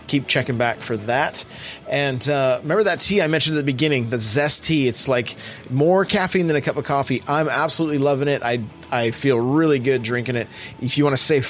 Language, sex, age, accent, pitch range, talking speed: English, male, 30-49, American, 125-170 Hz, 225 wpm